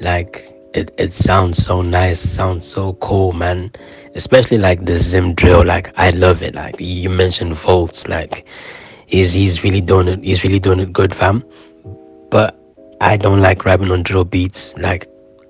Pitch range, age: 90-100 Hz, 20-39